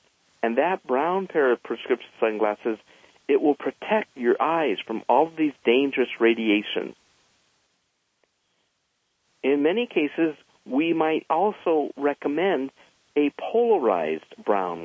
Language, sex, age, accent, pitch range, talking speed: English, male, 50-69, American, 120-165 Hz, 115 wpm